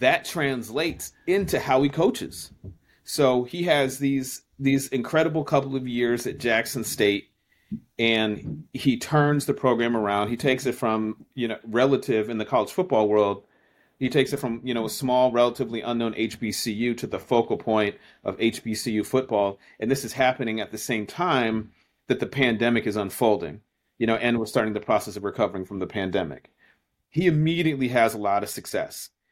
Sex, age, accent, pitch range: male, 40-59, American, 105-125 Hz